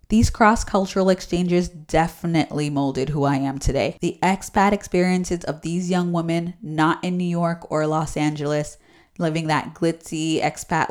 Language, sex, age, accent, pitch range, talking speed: English, female, 20-39, American, 150-185 Hz, 150 wpm